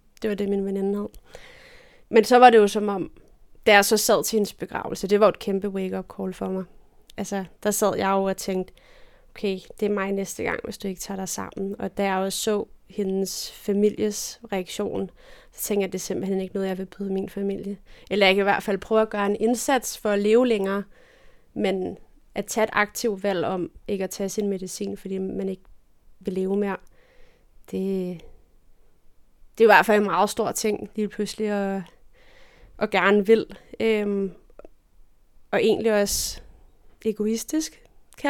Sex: female